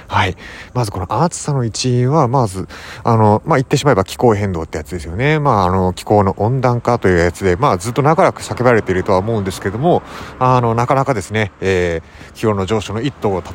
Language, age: Japanese, 30-49